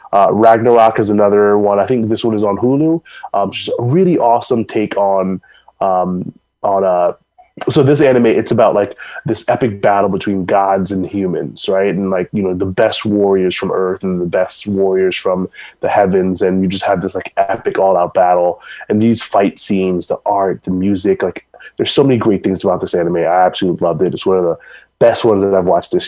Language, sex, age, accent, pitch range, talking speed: English, male, 20-39, American, 95-115 Hz, 215 wpm